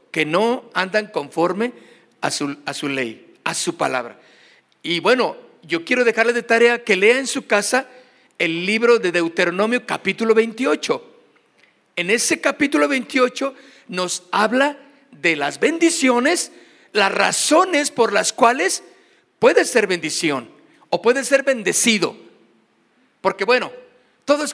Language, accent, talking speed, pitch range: Spanish, Mexican, 130 wpm, 185-270 Hz